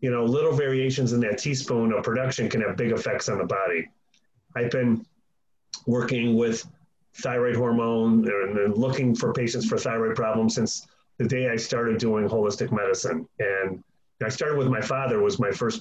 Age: 30-49